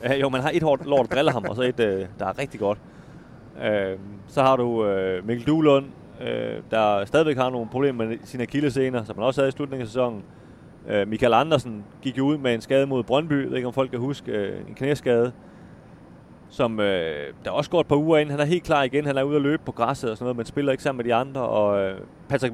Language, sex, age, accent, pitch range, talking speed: Danish, male, 30-49, native, 105-130 Hz, 250 wpm